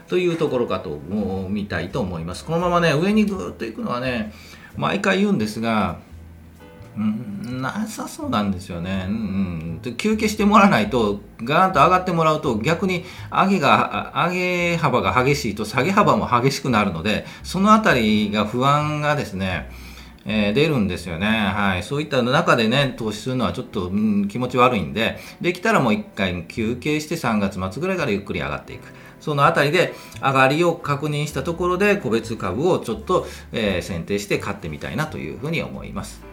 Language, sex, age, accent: Japanese, male, 40-59, native